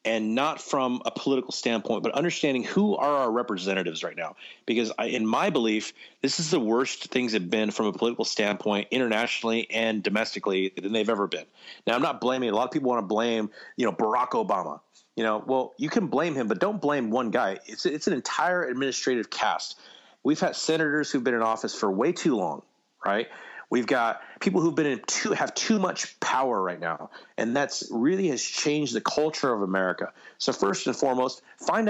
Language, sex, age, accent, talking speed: English, male, 30-49, American, 205 wpm